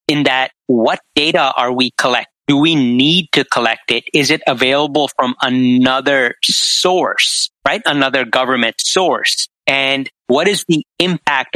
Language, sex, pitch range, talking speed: English, male, 125-150 Hz, 145 wpm